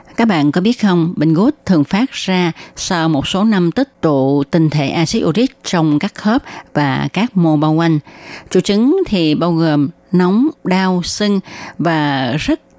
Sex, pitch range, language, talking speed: female, 150-205 Hz, Vietnamese, 180 wpm